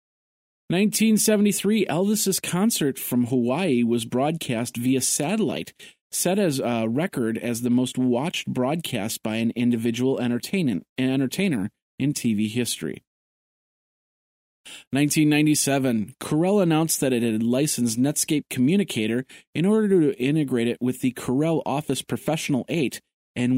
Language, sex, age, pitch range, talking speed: English, male, 40-59, 120-160 Hz, 115 wpm